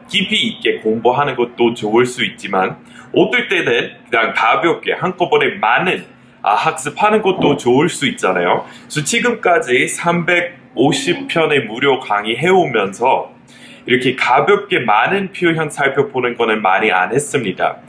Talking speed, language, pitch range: 110 wpm, English, 115-170 Hz